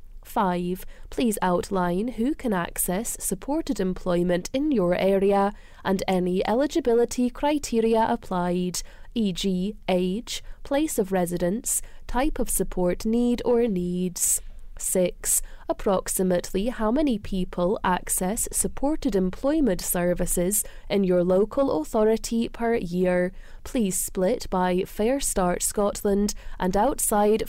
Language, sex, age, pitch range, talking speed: English, female, 20-39, 185-240 Hz, 110 wpm